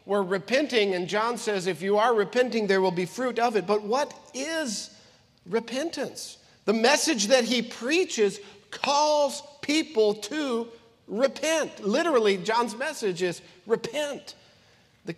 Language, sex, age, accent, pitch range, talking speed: English, male, 50-69, American, 210-275 Hz, 135 wpm